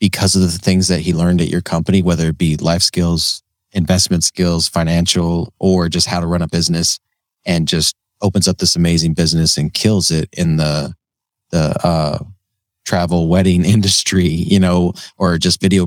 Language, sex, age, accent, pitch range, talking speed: English, male, 20-39, American, 80-95 Hz, 180 wpm